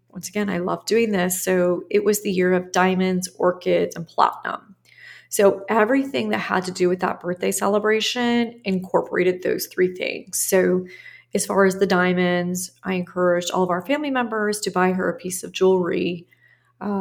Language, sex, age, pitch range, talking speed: English, female, 30-49, 180-205 Hz, 180 wpm